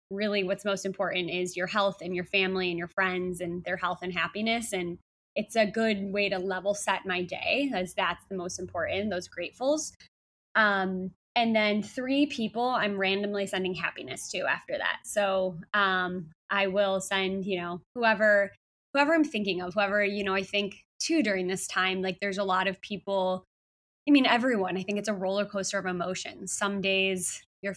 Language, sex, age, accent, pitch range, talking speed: English, female, 20-39, American, 185-215 Hz, 190 wpm